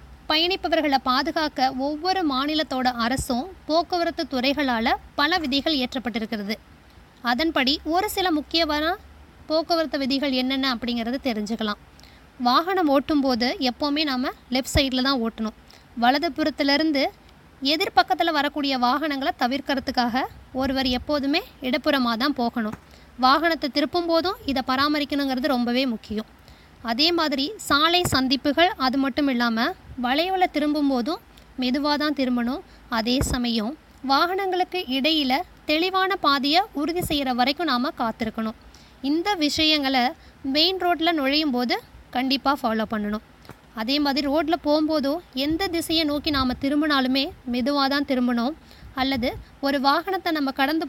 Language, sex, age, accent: Tamil, female, 20-39, native